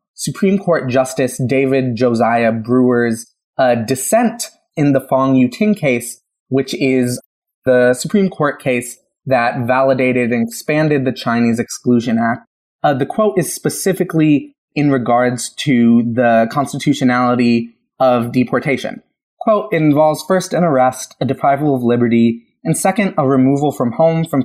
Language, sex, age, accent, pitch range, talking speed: English, male, 20-39, American, 125-160 Hz, 135 wpm